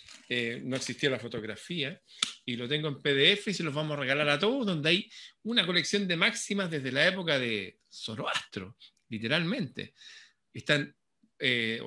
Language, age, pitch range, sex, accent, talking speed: Spanish, 40-59, 120-175 Hz, male, Argentinian, 160 wpm